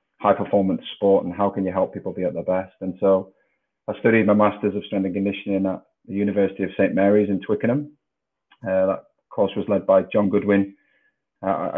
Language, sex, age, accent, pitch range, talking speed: English, male, 30-49, British, 95-105 Hz, 205 wpm